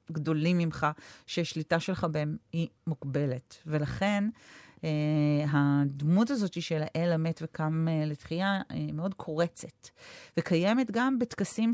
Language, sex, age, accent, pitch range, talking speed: Hebrew, female, 40-59, native, 140-165 Hz, 120 wpm